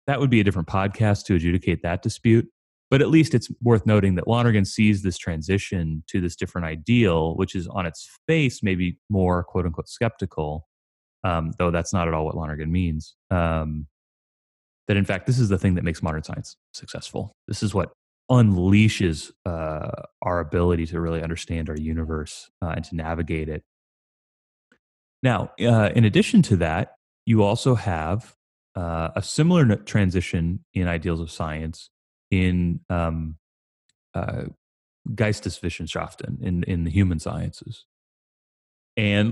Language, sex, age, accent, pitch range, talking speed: English, male, 30-49, American, 80-105 Hz, 155 wpm